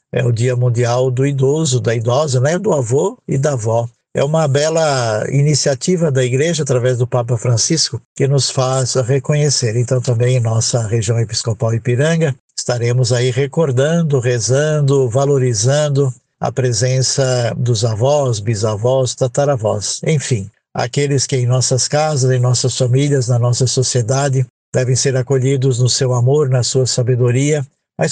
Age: 60-79